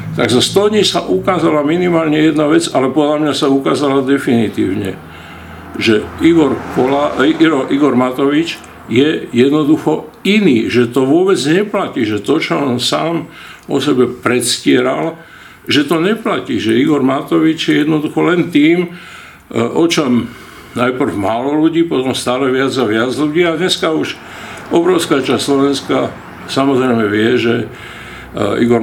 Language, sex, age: Slovak, male, 50-69